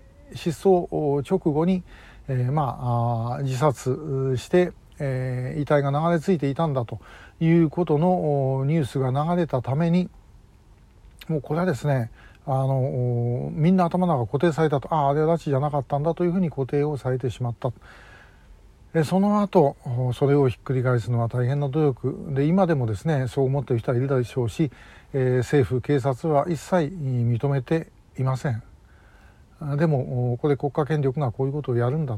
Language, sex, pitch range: Japanese, male, 130-170 Hz